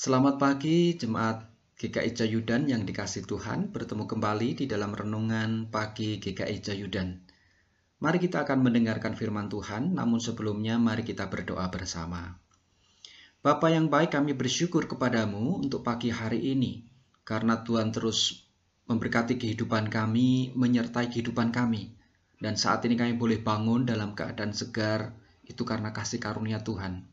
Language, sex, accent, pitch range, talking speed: Indonesian, male, native, 105-130 Hz, 135 wpm